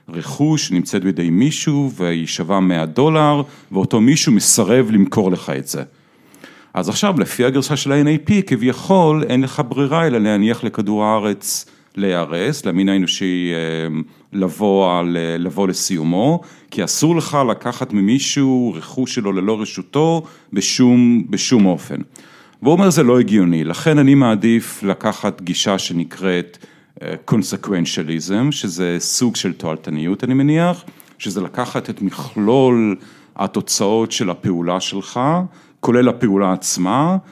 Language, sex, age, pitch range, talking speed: Hebrew, male, 50-69, 90-135 Hz, 120 wpm